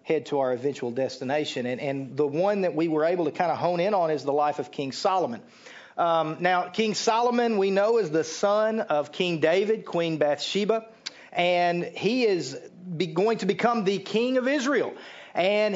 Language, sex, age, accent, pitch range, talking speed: English, male, 40-59, American, 180-235 Hz, 195 wpm